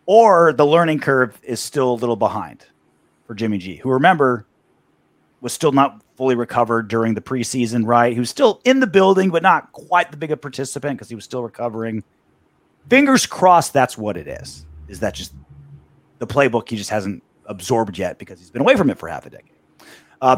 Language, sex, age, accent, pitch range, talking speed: English, male, 30-49, American, 115-160 Hz, 200 wpm